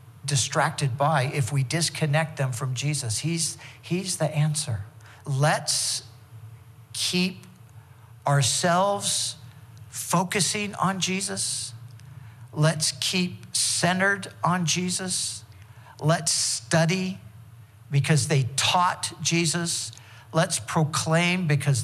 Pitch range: 125-160 Hz